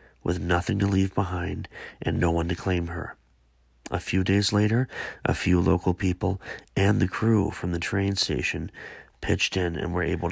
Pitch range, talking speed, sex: 85-100 Hz, 180 wpm, male